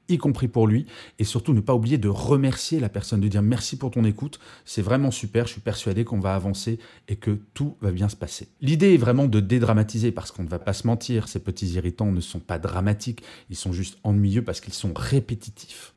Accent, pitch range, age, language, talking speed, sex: French, 95-125 Hz, 30-49, French, 235 wpm, male